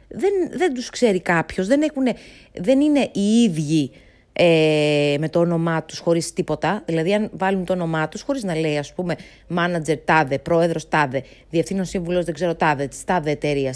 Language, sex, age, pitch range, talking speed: Greek, female, 30-49, 150-205 Hz, 175 wpm